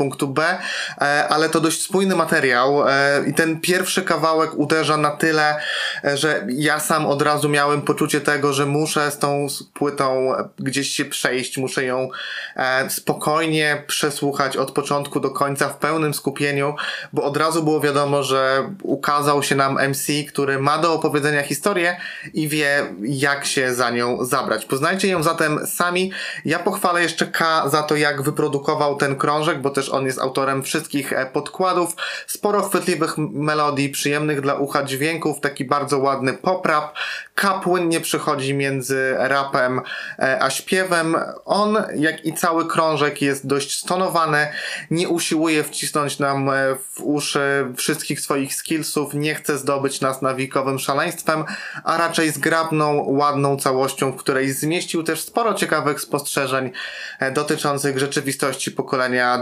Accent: native